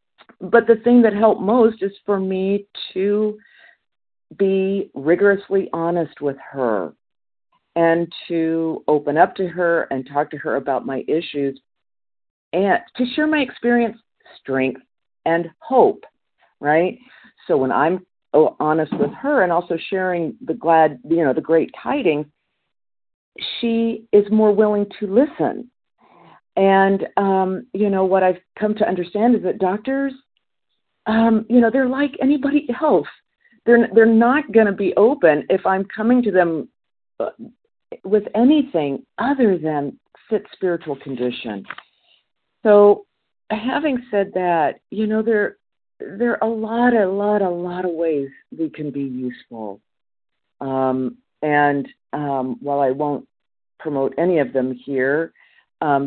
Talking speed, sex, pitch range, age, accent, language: 140 wpm, female, 150-220 Hz, 50-69, American, English